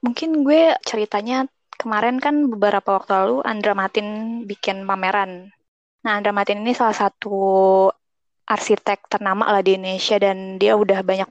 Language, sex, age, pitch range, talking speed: Indonesian, female, 20-39, 195-225 Hz, 145 wpm